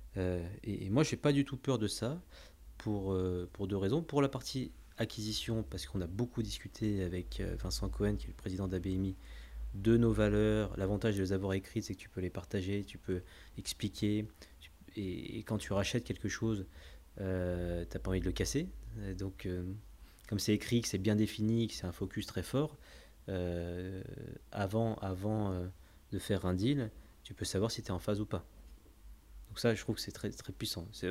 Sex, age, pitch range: male, 30-49, 90-115 Hz